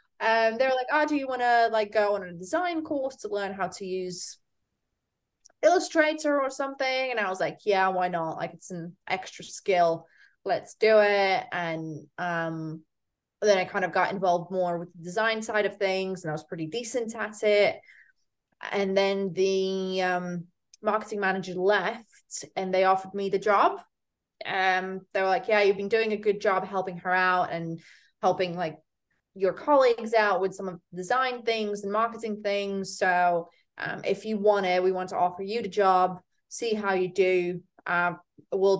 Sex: female